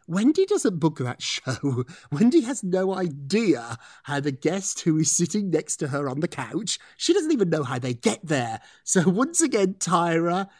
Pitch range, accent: 140-225 Hz, British